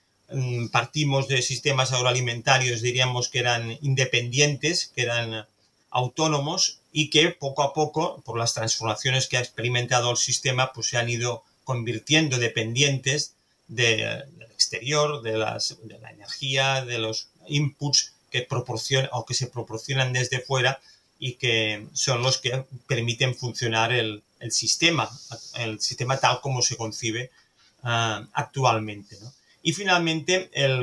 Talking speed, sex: 135 wpm, male